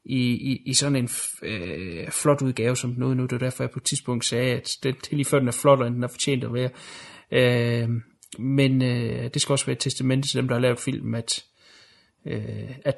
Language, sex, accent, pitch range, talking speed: Danish, male, native, 120-140 Hz, 230 wpm